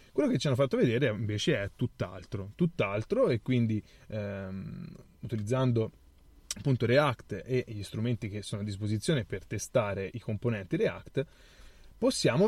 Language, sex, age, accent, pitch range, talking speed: Italian, male, 30-49, native, 105-135 Hz, 135 wpm